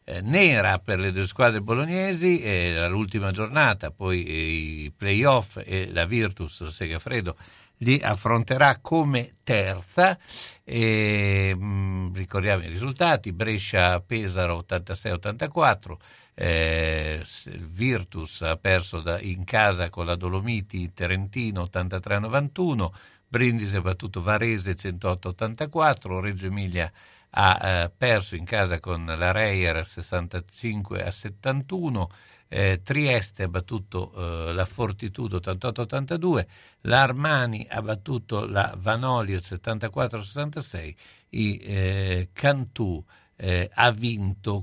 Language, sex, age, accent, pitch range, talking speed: Italian, male, 60-79, native, 90-115 Hz, 105 wpm